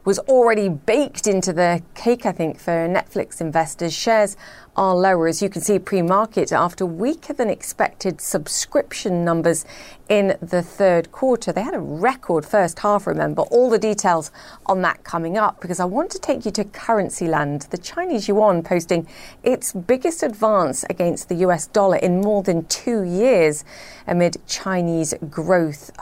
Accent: British